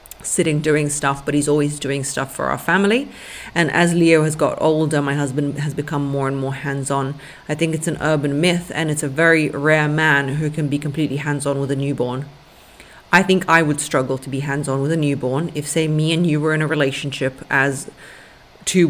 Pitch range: 140-160 Hz